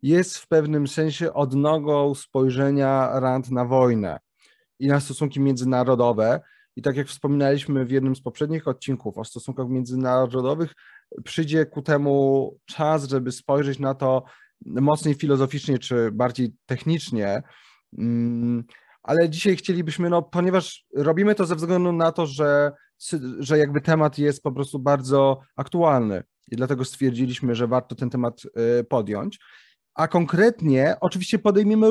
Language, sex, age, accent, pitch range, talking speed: Polish, male, 30-49, native, 125-155 Hz, 130 wpm